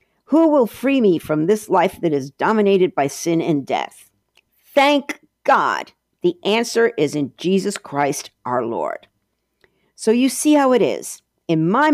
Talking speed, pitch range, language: 160 wpm, 160-230 Hz, English